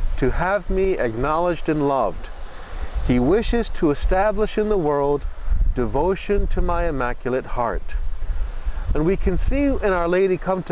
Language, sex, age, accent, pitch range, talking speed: English, male, 40-59, American, 125-190 Hz, 140 wpm